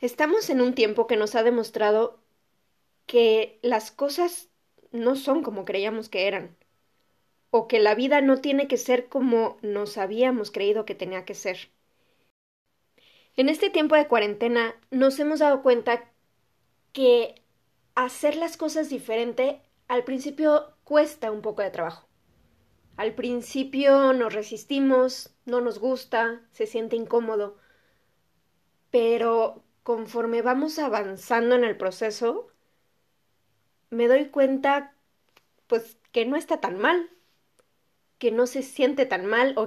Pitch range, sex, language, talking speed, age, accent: 225-280 Hz, female, Spanish, 130 wpm, 20-39, Mexican